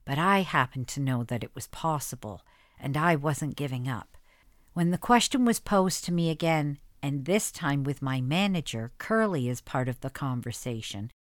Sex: female